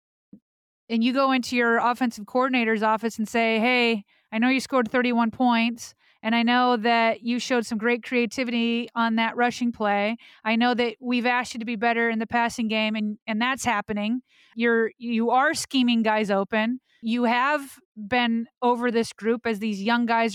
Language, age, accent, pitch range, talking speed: English, 30-49, American, 230-260 Hz, 190 wpm